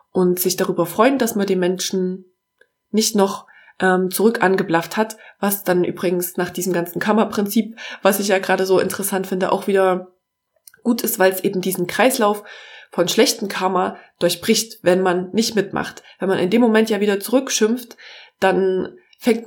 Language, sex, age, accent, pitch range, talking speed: German, female, 20-39, German, 185-225 Hz, 170 wpm